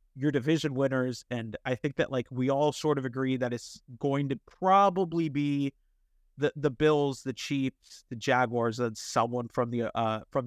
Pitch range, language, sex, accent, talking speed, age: 115-145 Hz, English, male, American, 185 wpm, 30-49